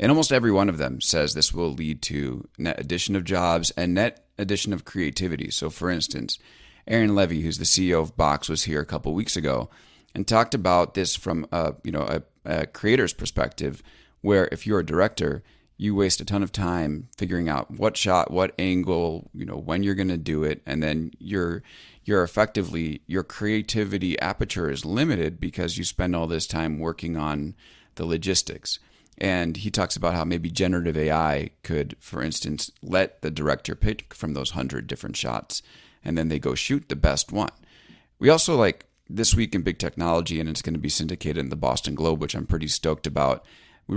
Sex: male